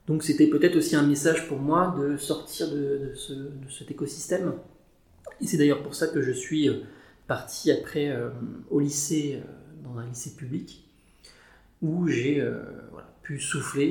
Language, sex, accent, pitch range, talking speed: French, male, French, 130-155 Hz, 165 wpm